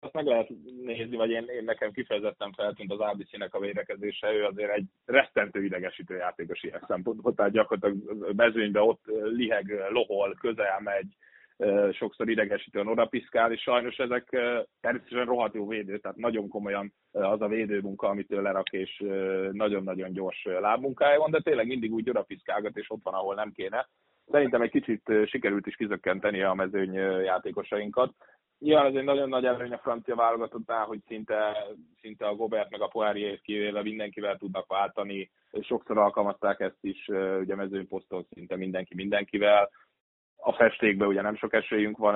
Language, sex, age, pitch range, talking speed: Hungarian, male, 30-49, 100-120 Hz, 160 wpm